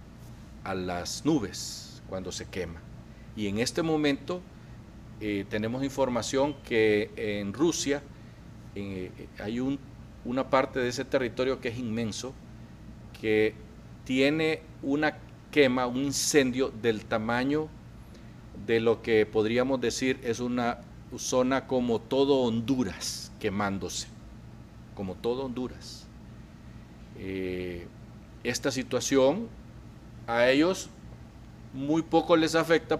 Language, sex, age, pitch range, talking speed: Spanish, male, 50-69, 110-135 Hz, 105 wpm